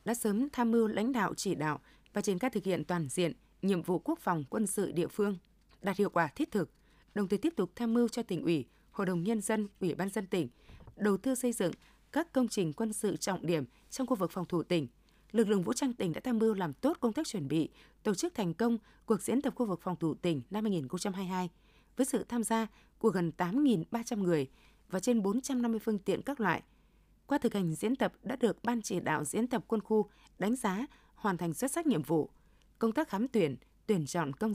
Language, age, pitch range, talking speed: Vietnamese, 20-39, 180-235 Hz, 235 wpm